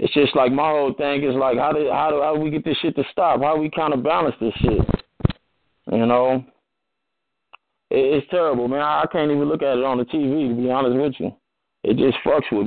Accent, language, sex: American, Japanese, male